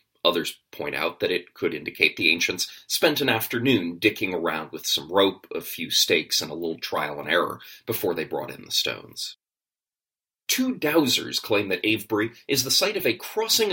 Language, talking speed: English, 190 wpm